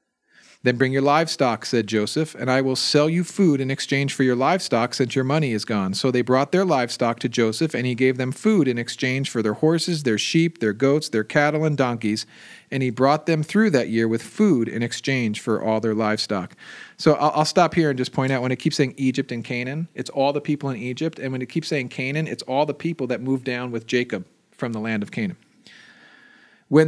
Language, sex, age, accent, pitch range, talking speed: English, male, 40-59, American, 125-160 Hz, 230 wpm